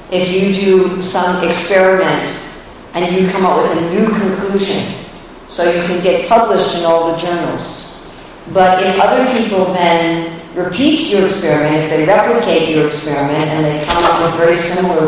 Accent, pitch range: American, 150-185 Hz